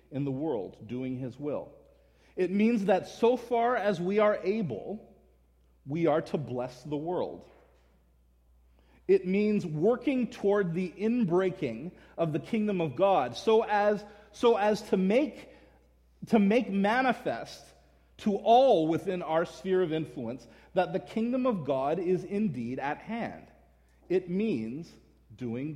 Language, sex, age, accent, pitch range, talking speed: English, male, 40-59, American, 130-200 Hz, 140 wpm